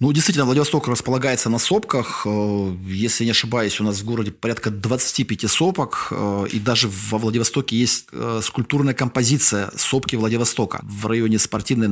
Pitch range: 105-130 Hz